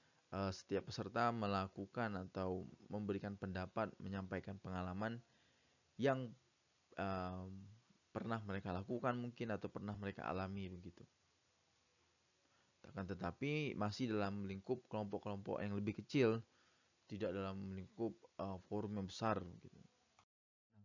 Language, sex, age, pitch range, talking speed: Indonesian, male, 20-39, 100-115 Hz, 100 wpm